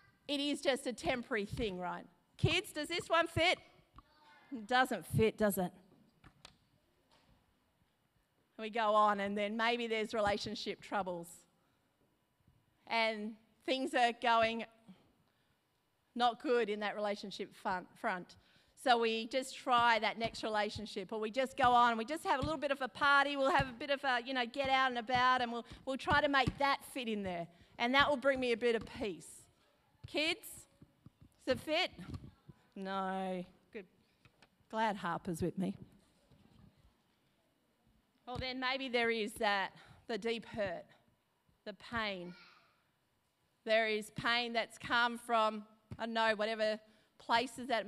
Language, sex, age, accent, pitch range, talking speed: English, female, 40-59, Australian, 200-250 Hz, 150 wpm